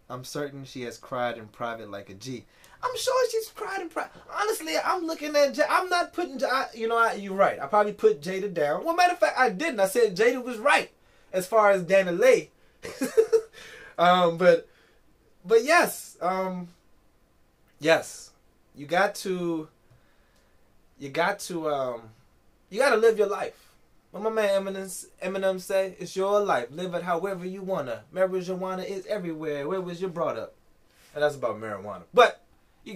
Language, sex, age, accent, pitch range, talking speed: English, male, 20-39, American, 175-235 Hz, 180 wpm